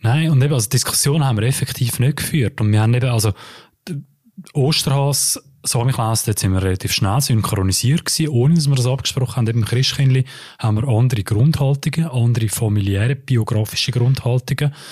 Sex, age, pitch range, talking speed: male, 20-39, 115-135 Hz, 175 wpm